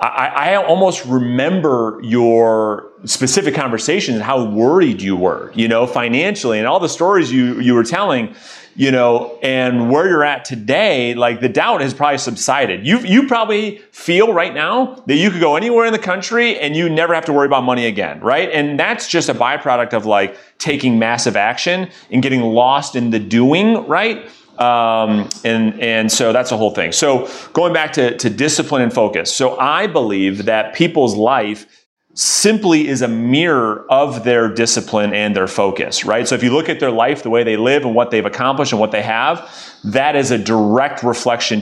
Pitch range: 115-150 Hz